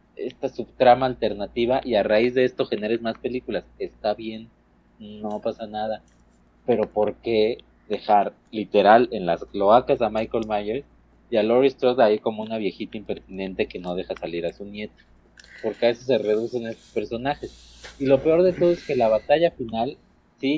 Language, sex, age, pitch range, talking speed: Spanish, male, 30-49, 95-125 Hz, 180 wpm